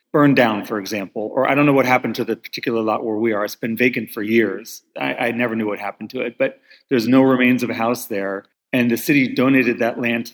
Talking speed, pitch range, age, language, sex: 260 wpm, 115-135 Hz, 30-49, English, male